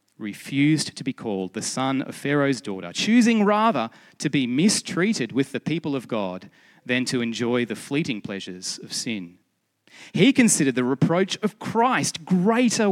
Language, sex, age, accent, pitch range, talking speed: English, male, 30-49, Australian, 110-180 Hz, 160 wpm